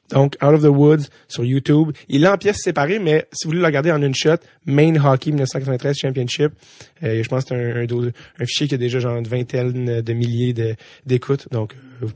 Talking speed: 240 wpm